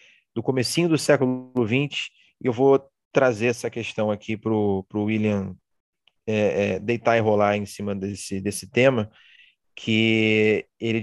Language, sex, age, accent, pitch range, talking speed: Portuguese, male, 30-49, Brazilian, 105-140 Hz, 140 wpm